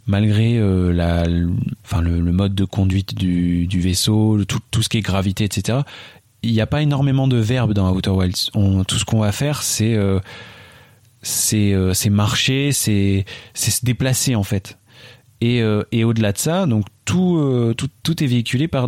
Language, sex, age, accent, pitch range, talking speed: French, male, 30-49, French, 100-120 Hz, 195 wpm